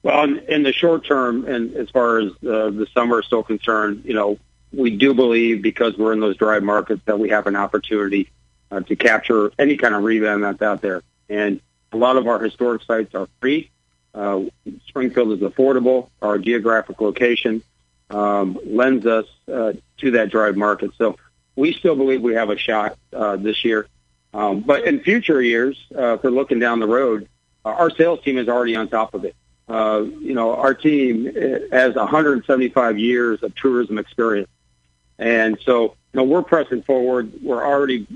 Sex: male